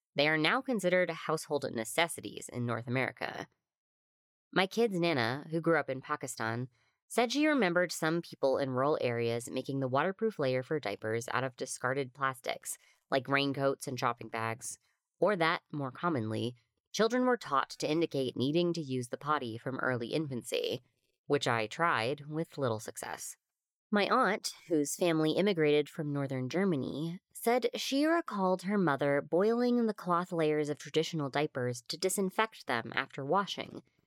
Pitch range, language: 130-180 Hz, English